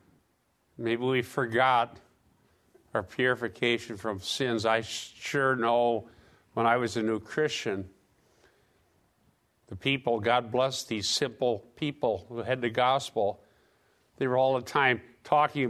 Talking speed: 125 wpm